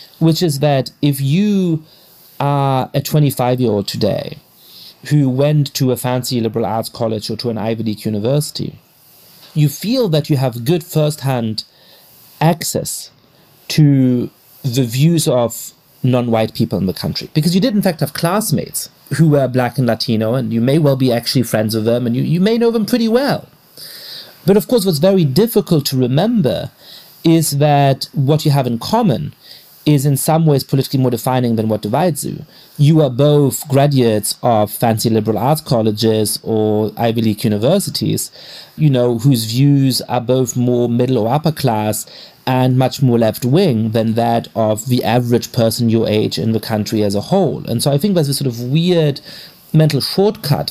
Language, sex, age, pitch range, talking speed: English, male, 40-59, 115-155 Hz, 175 wpm